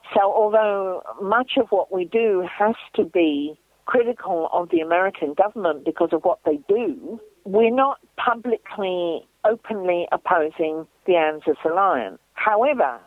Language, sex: English, female